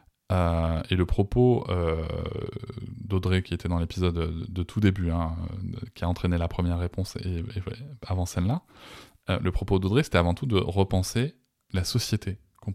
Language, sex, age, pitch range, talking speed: French, male, 20-39, 90-115 Hz, 160 wpm